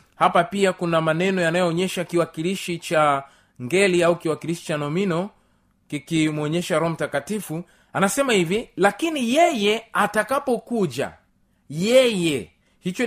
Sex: male